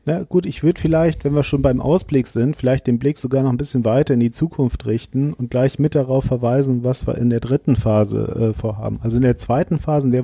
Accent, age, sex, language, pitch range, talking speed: German, 40-59, male, German, 120-145 Hz, 250 wpm